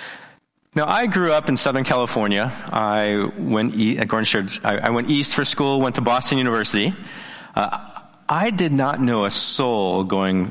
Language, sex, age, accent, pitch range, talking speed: English, male, 40-59, American, 105-140 Hz, 165 wpm